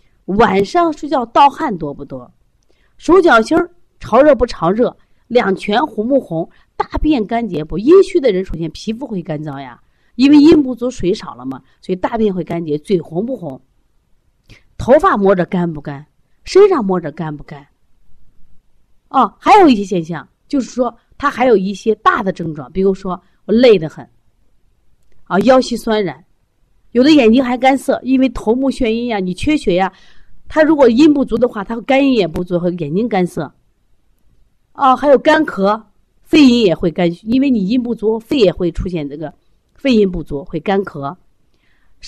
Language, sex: Chinese, female